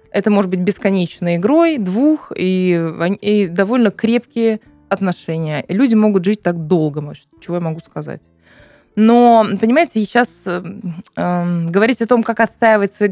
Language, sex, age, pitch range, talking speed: Russian, female, 20-39, 175-215 Hz, 145 wpm